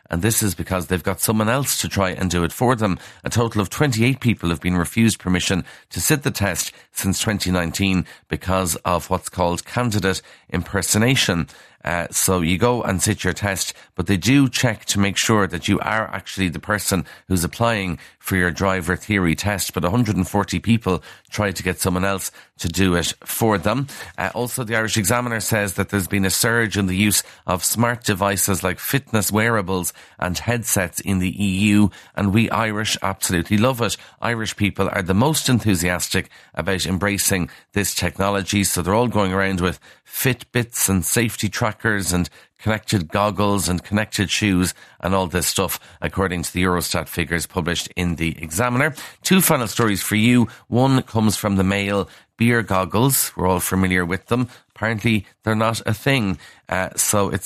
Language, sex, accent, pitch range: English, male, Irish, 95-115 Hz